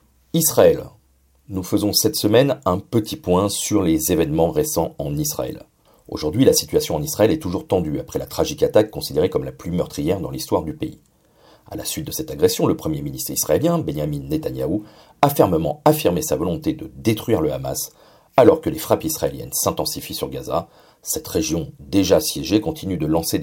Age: 40-59